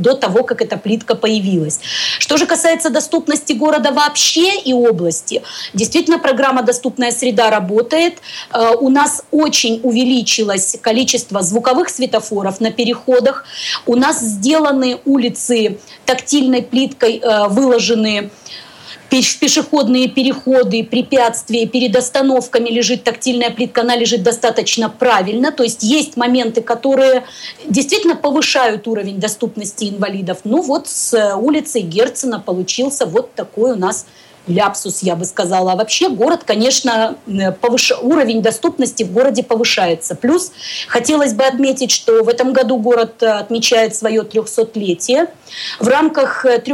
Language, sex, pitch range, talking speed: Russian, female, 225-270 Hz, 125 wpm